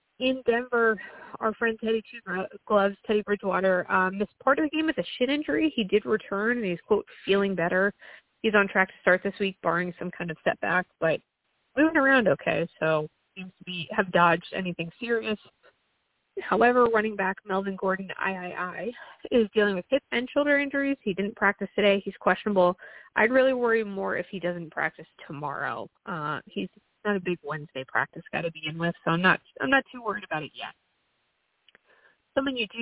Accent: American